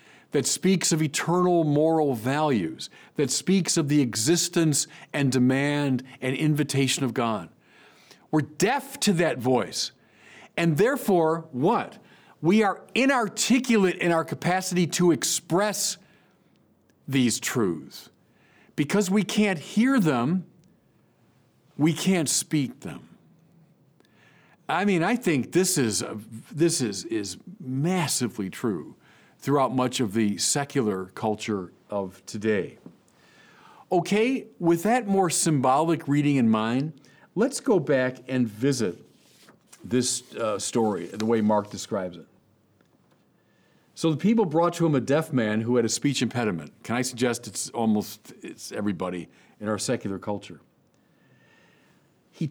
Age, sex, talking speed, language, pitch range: 50-69, male, 120 wpm, English, 125-180 Hz